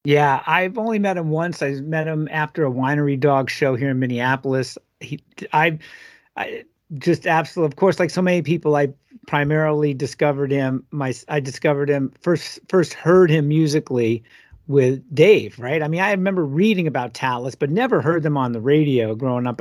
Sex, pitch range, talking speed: male, 130-160 Hz, 185 wpm